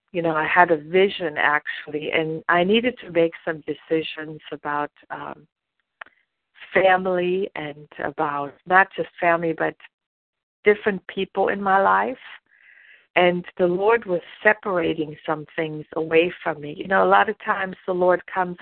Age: 50-69